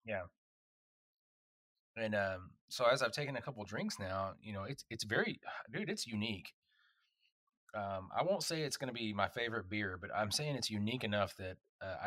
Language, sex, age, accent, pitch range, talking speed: English, male, 30-49, American, 95-115 Hz, 195 wpm